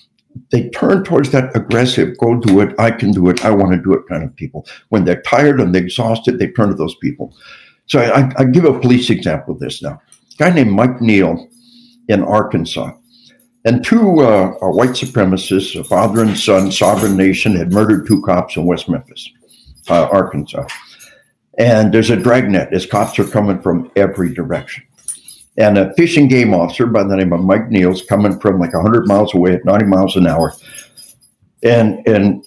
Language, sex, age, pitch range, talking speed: English, male, 60-79, 95-130 Hz, 190 wpm